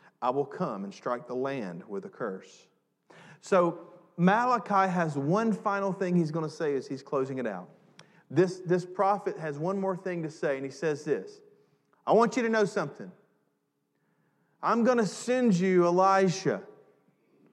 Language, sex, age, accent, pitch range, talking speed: English, male, 40-59, American, 135-195 Hz, 170 wpm